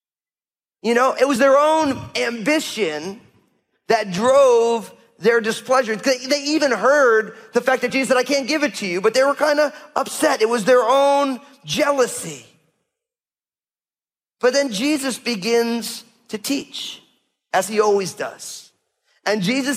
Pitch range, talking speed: 215-270 Hz, 145 wpm